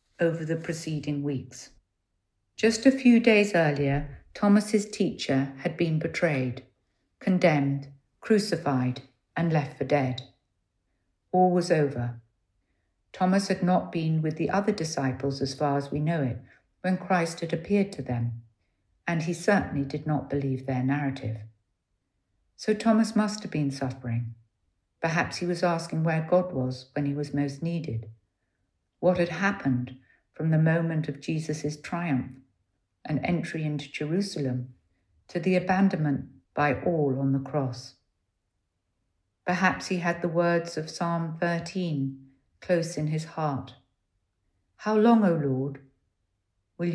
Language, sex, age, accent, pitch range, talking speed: English, female, 60-79, British, 115-170 Hz, 135 wpm